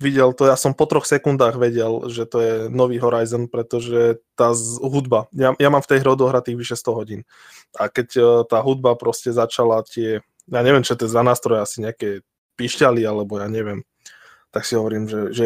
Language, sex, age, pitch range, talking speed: Slovak, male, 20-39, 110-125 Hz, 205 wpm